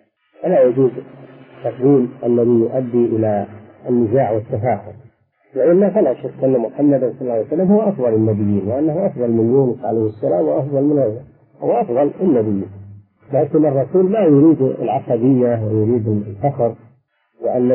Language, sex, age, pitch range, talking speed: Arabic, male, 50-69, 115-140 Hz, 130 wpm